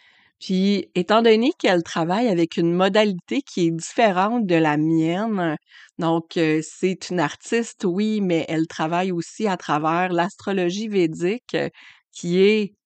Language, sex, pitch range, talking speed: French, female, 165-195 Hz, 135 wpm